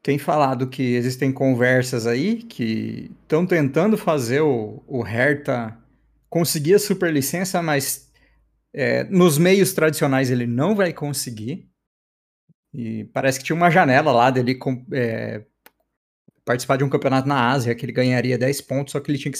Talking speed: 155 wpm